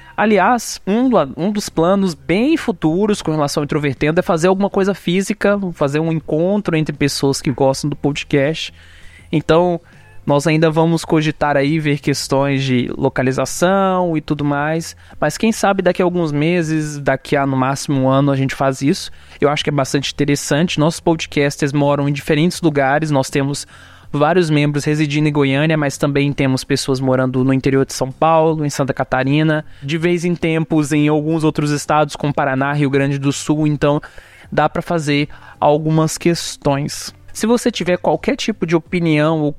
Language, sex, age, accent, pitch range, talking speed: Portuguese, male, 20-39, Brazilian, 140-180 Hz, 175 wpm